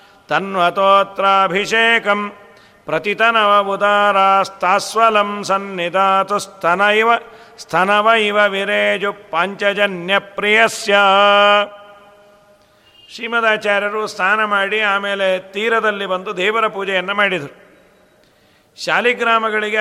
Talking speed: 65 wpm